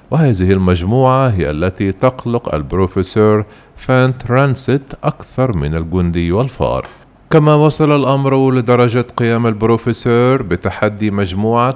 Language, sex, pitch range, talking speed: Arabic, male, 95-130 Hz, 100 wpm